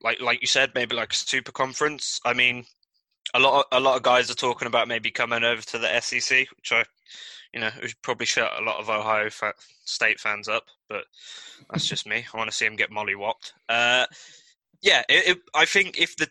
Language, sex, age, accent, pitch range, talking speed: English, male, 20-39, British, 115-135 Hz, 230 wpm